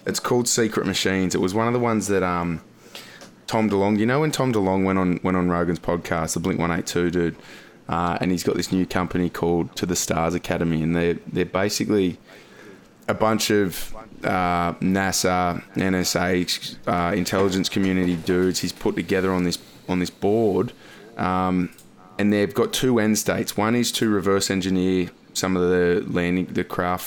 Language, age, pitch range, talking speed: English, 20-39, 90-100 Hz, 180 wpm